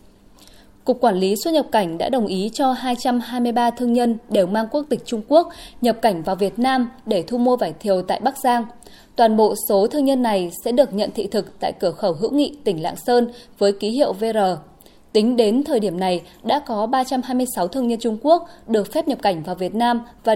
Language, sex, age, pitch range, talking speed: Vietnamese, female, 20-39, 200-255 Hz, 220 wpm